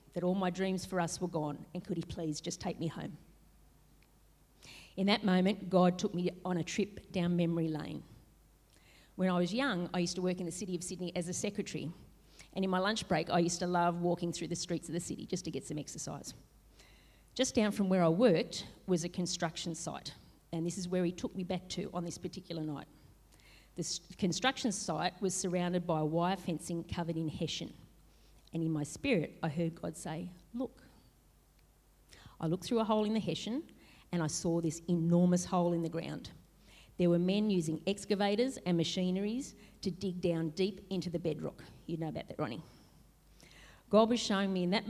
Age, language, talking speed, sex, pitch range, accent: 40-59, English, 200 wpm, female, 165-190 Hz, Australian